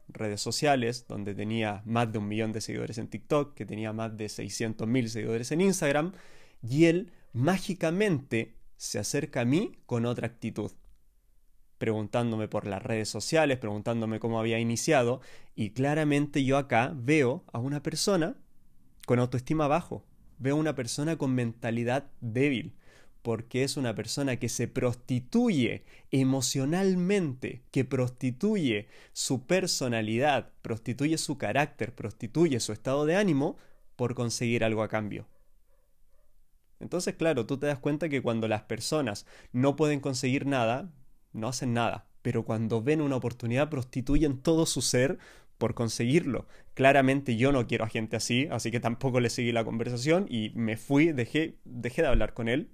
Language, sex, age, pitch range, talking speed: Spanish, male, 20-39, 115-145 Hz, 150 wpm